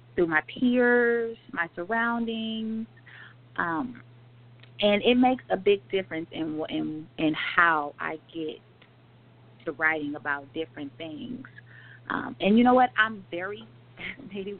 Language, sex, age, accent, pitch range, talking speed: English, female, 30-49, American, 150-195 Hz, 125 wpm